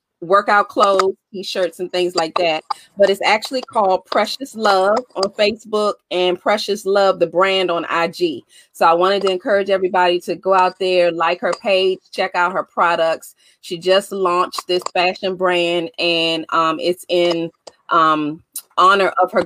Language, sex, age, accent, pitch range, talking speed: English, female, 30-49, American, 170-205 Hz, 165 wpm